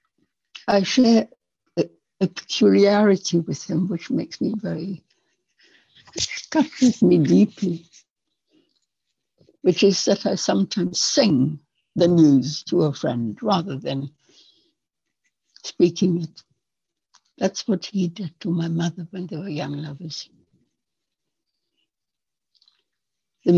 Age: 60-79